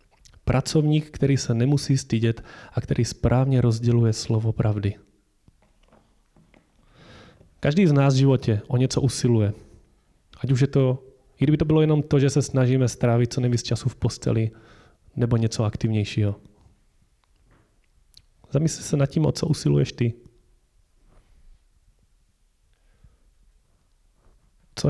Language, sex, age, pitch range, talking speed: Czech, male, 30-49, 115-140 Hz, 125 wpm